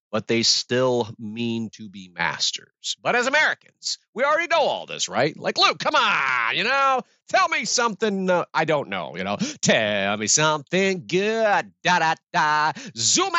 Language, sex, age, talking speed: English, male, 40-59, 175 wpm